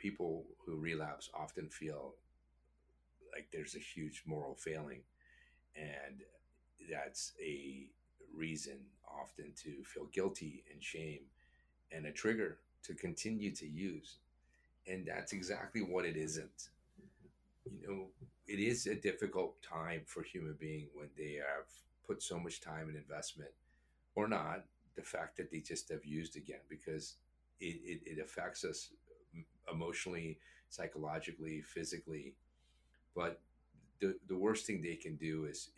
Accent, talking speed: American, 135 wpm